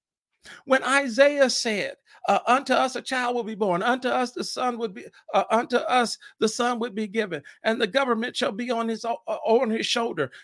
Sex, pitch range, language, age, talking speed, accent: male, 210-265 Hz, English, 50-69, 205 wpm, American